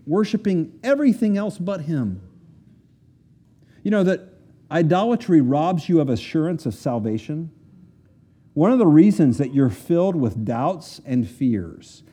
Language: English